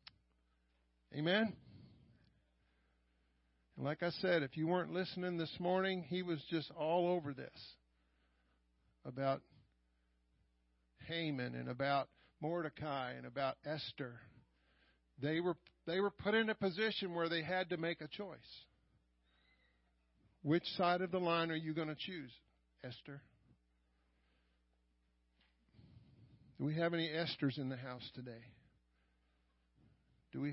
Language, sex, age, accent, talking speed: English, male, 50-69, American, 120 wpm